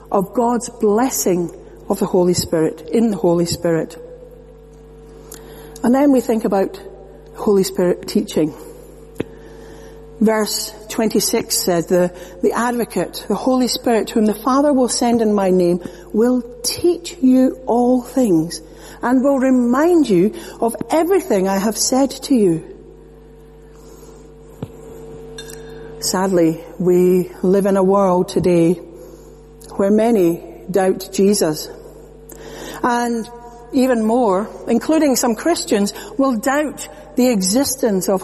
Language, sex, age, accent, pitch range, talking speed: English, female, 60-79, British, 185-245 Hz, 115 wpm